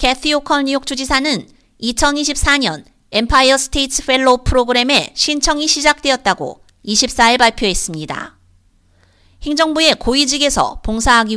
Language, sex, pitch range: Korean, female, 230-285 Hz